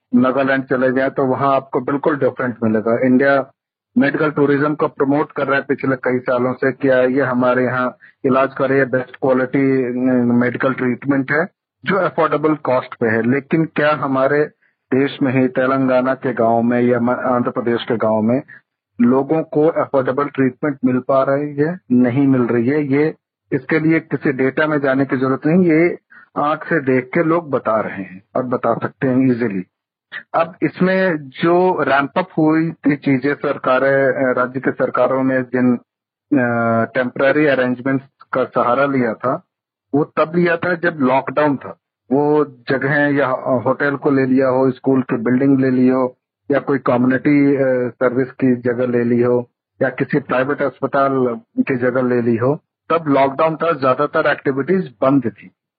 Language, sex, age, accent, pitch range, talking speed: Hindi, male, 50-69, native, 125-145 Hz, 165 wpm